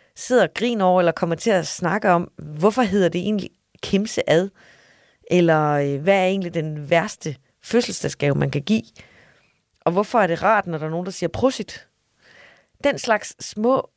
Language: Danish